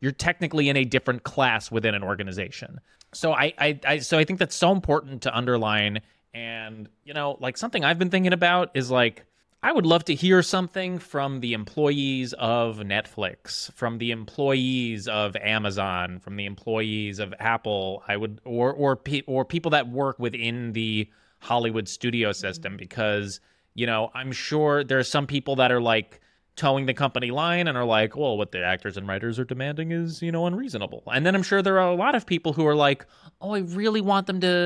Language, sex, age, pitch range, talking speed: English, male, 20-39, 115-170 Hz, 200 wpm